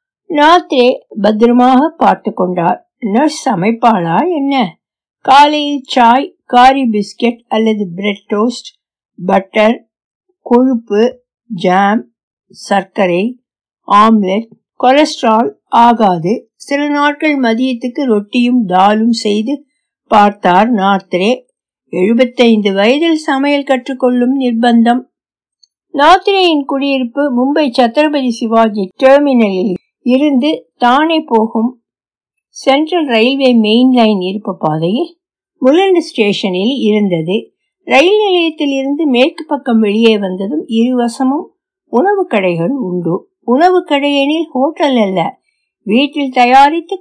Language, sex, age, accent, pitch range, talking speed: Tamil, female, 60-79, native, 215-295 Hz, 45 wpm